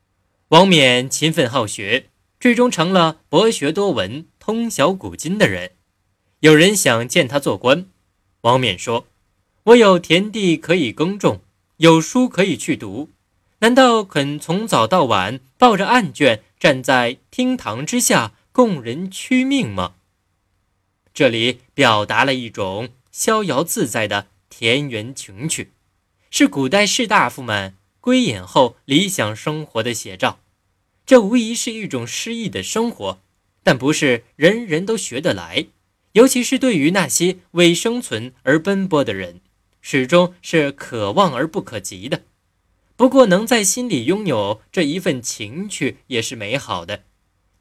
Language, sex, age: Chinese, male, 20-39